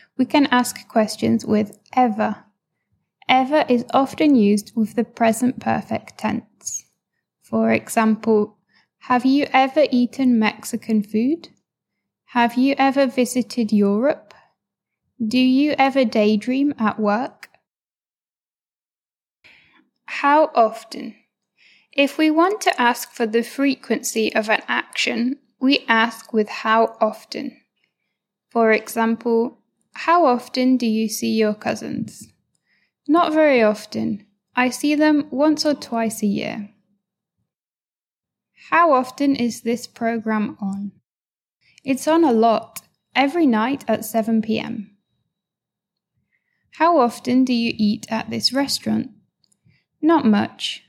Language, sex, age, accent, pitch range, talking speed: English, female, 10-29, British, 220-270 Hz, 115 wpm